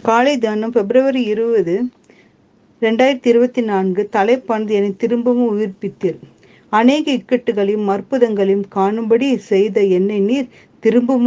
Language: Tamil